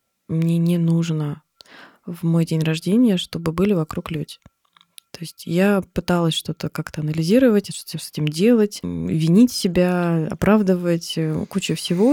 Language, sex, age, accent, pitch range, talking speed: Russian, female, 20-39, native, 165-195 Hz, 135 wpm